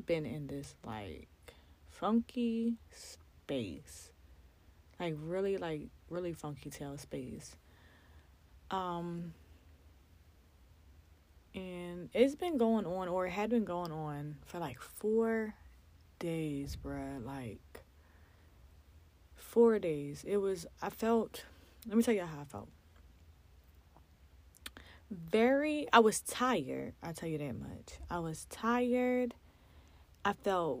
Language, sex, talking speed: English, female, 115 wpm